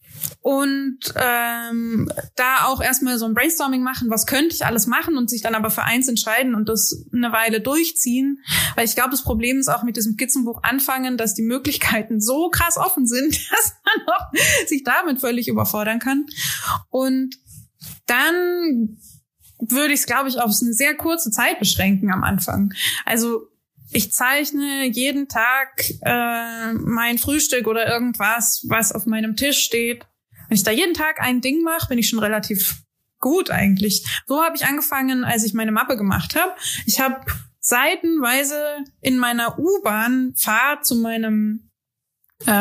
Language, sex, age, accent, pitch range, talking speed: German, female, 20-39, German, 225-280 Hz, 160 wpm